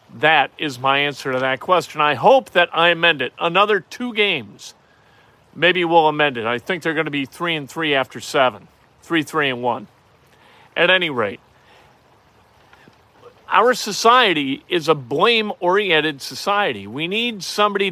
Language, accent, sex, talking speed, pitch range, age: English, American, male, 155 wpm, 155-210 Hz, 50-69